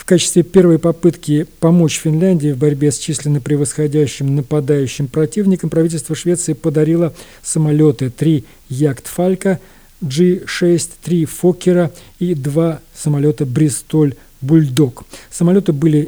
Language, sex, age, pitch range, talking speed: Russian, male, 50-69, 140-165 Hz, 105 wpm